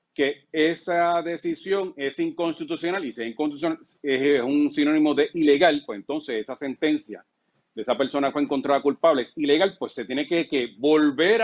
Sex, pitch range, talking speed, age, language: male, 145-205 Hz, 165 wpm, 40-59, English